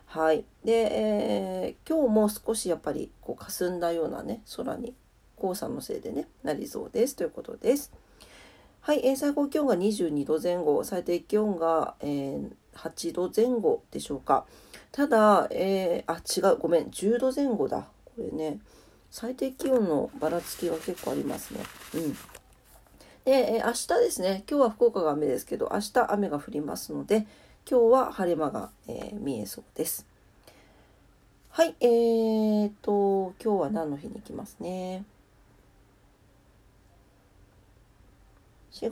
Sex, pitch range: female, 145-240 Hz